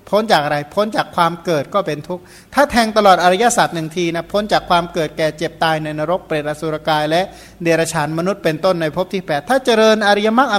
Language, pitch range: Thai, 155-195 Hz